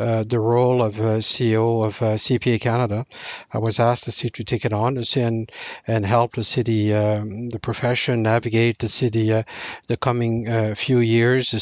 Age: 60-79